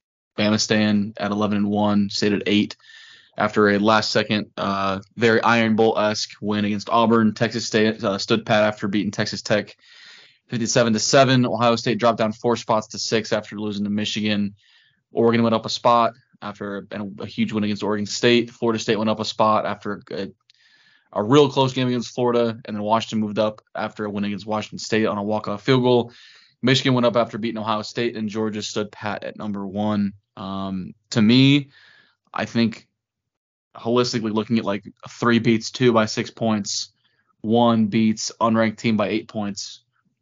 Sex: male